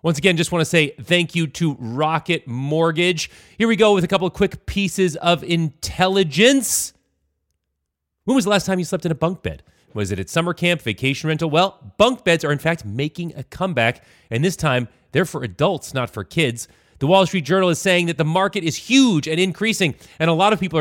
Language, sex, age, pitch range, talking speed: English, male, 30-49, 115-175 Hz, 220 wpm